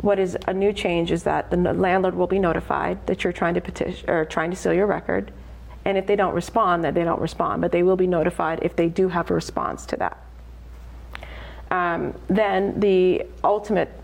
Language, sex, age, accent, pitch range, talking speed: English, female, 30-49, American, 150-185 Hz, 210 wpm